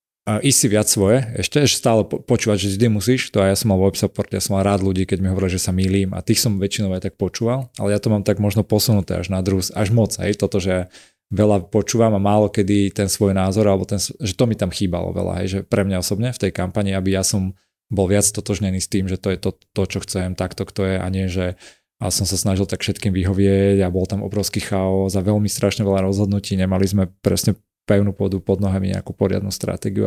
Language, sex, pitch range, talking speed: Slovak, male, 95-110 Hz, 245 wpm